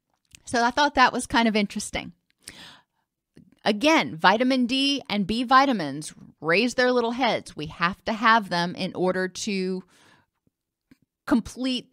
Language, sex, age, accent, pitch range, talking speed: English, female, 30-49, American, 190-245 Hz, 135 wpm